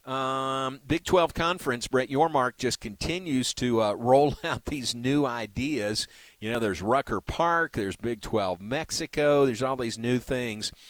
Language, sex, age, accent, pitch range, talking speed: English, male, 50-69, American, 110-140 Hz, 165 wpm